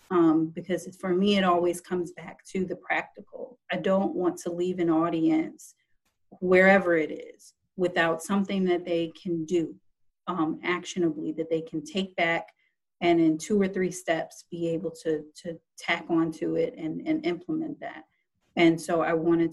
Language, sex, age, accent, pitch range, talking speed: English, female, 30-49, American, 165-185 Hz, 170 wpm